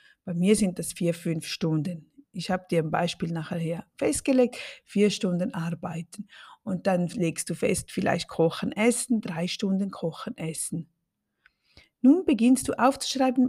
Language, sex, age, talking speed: German, female, 50-69, 145 wpm